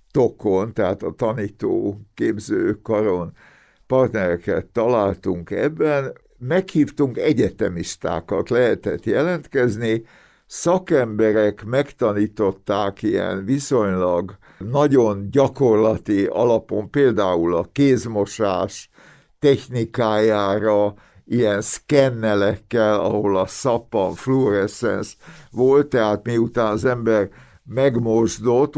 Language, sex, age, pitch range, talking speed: Hungarian, male, 60-79, 105-135 Hz, 70 wpm